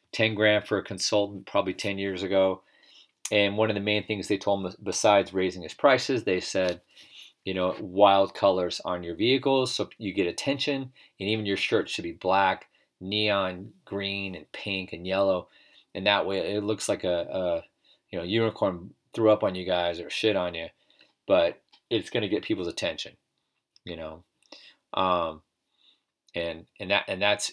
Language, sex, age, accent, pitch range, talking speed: English, male, 40-59, American, 90-110 Hz, 180 wpm